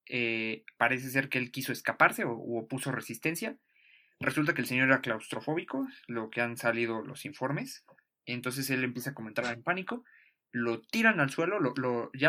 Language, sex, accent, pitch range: Spanish, male, Mexican, 115-145 Hz